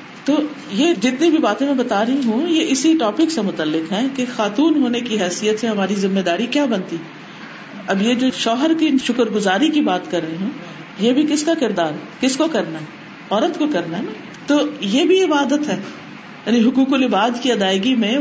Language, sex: Urdu, female